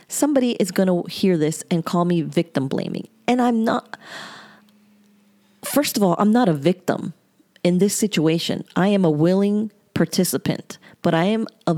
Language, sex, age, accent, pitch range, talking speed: English, female, 40-59, American, 160-205 Hz, 170 wpm